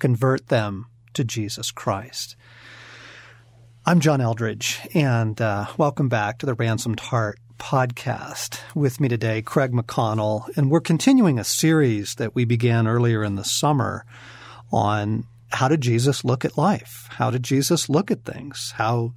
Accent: American